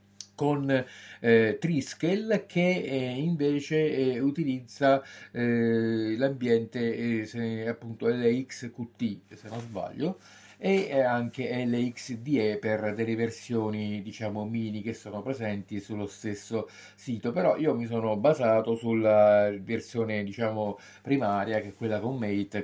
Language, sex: Italian, male